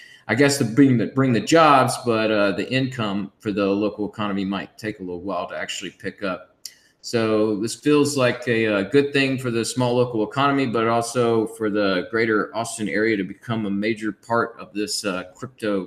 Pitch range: 100-125 Hz